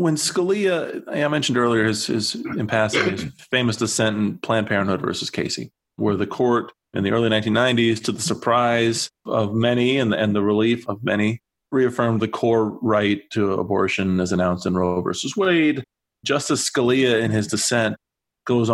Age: 30-49